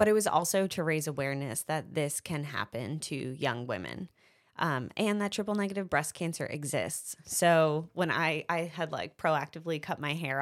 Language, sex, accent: English, female, American